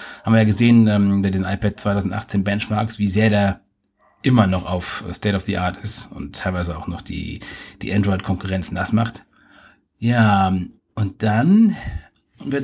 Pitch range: 100-120 Hz